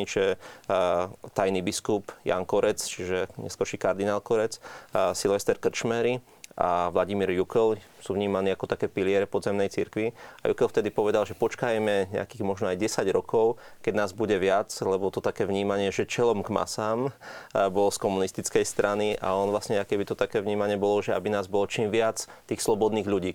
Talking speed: 170 wpm